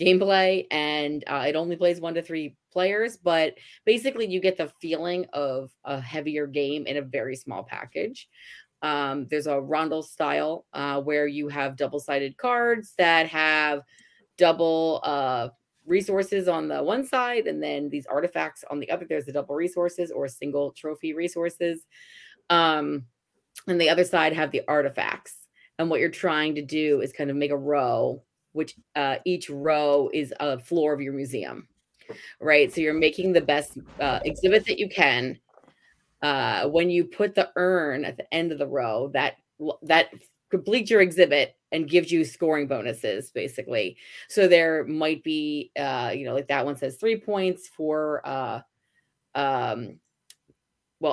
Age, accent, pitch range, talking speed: 30-49, American, 145-180 Hz, 165 wpm